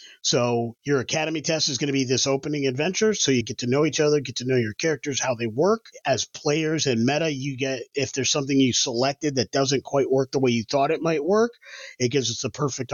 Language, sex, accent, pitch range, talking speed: English, male, American, 120-150 Hz, 245 wpm